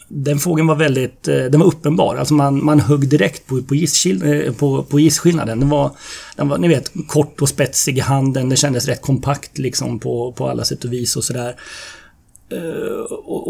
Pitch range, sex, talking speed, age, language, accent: 130-155 Hz, male, 180 wpm, 30-49, Swedish, native